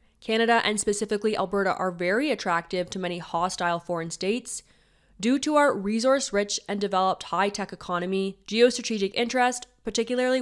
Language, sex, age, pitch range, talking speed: English, female, 20-39, 180-220 Hz, 130 wpm